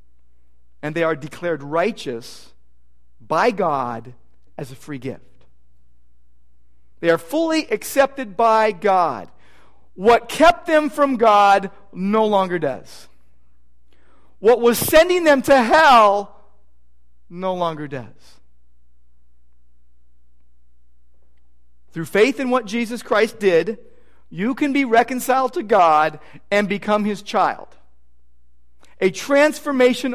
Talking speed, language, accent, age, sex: 105 wpm, English, American, 40-59, male